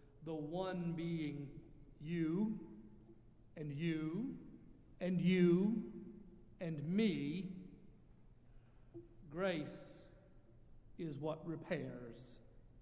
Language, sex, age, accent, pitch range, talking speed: English, male, 50-69, American, 125-175 Hz, 65 wpm